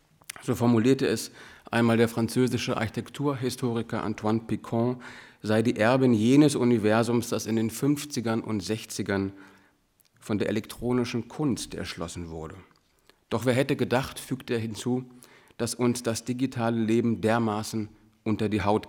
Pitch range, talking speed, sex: 110-130 Hz, 135 wpm, male